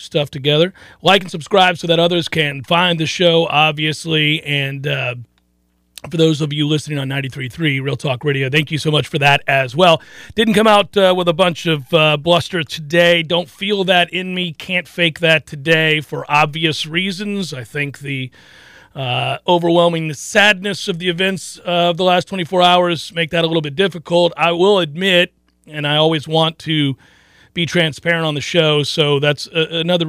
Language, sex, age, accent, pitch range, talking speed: English, male, 40-59, American, 140-175 Hz, 185 wpm